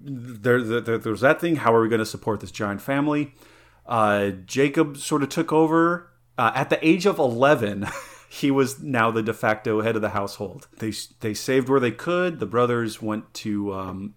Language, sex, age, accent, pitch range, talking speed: English, male, 30-49, American, 110-145 Hz, 200 wpm